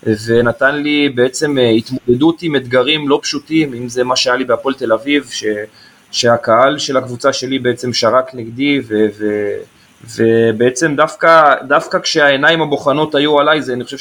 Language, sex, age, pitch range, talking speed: Hebrew, male, 20-39, 120-145 Hz, 155 wpm